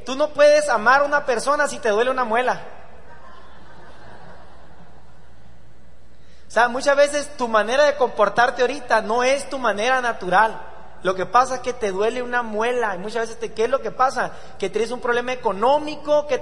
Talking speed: 185 wpm